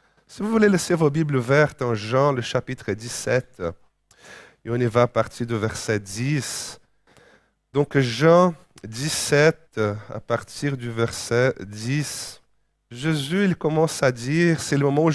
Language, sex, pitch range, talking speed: French, male, 130-175 Hz, 155 wpm